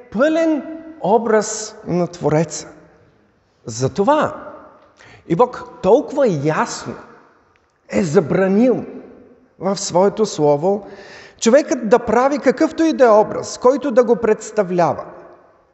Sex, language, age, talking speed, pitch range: male, Bulgarian, 50-69, 100 wpm, 150-250 Hz